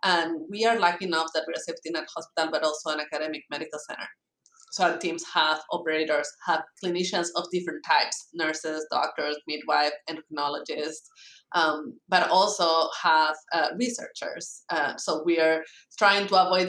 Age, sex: 20-39, female